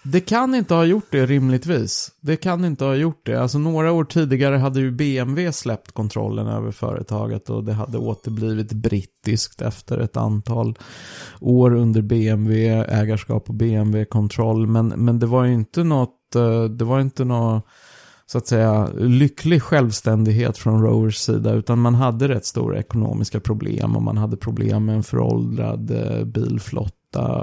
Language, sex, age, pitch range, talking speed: Swedish, male, 30-49, 110-135 Hz, 140 wpm